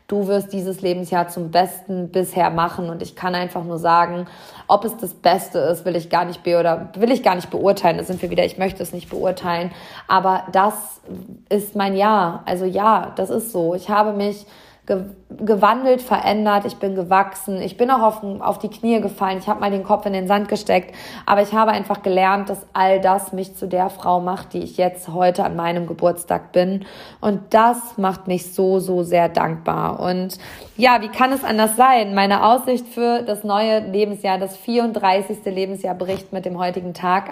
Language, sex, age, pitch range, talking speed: German, female, 20-39, 180-205 Hz, 190 wpm